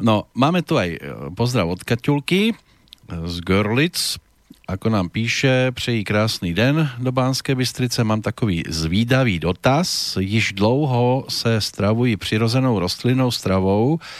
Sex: male